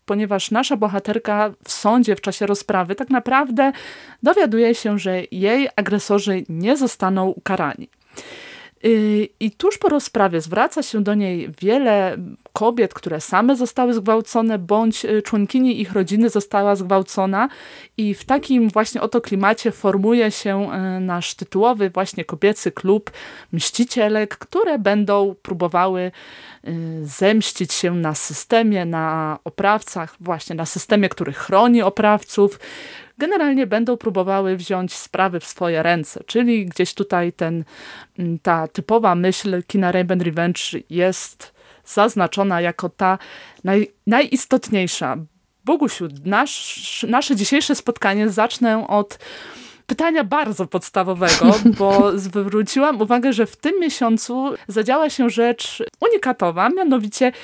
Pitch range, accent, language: 190-240 Hz, native, Polish